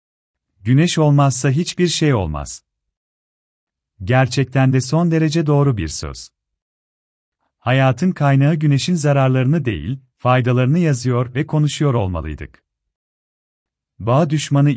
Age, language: 40-59, Turkish